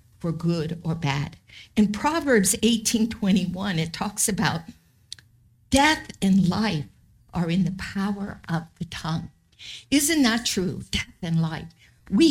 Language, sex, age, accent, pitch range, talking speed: English, female, 50-69, American, 160-210 Hz, 135 wpm